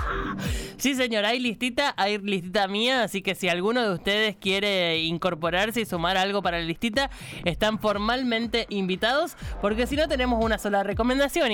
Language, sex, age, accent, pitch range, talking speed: Spanish, male, 20-39, Argentinian, 175-225 Hz, 160 wpm